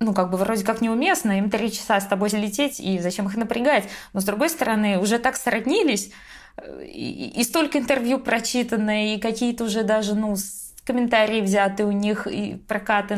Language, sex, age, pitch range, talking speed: Russian, female, 20-39, 185-225 Hz, 180 wpm